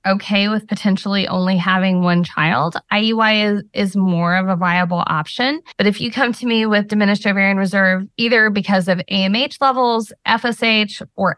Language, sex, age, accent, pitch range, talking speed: English, female, 20-39, American, 190-240 Hz, 170 wpm